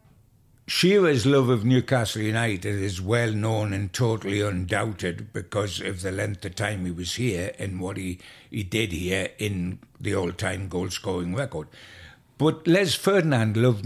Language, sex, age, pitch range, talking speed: English, male, 60-79, 95-130 Hz, 150 wpm